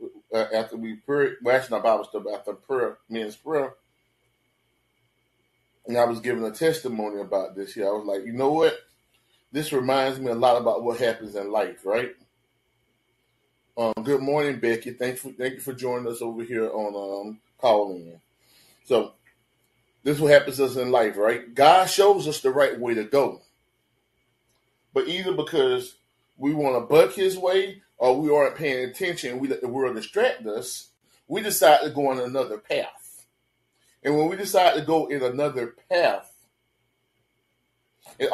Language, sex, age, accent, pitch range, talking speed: English, male, 30-49, American, 120-150 Hz, 175 wpm